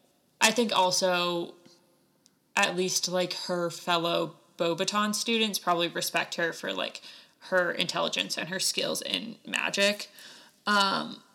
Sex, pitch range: female, 175-195 Hz